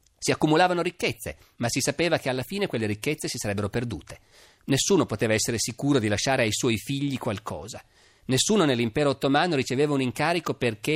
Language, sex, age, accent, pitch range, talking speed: Italian, male, 40-59, native, 110-145 Hz, 170 wpm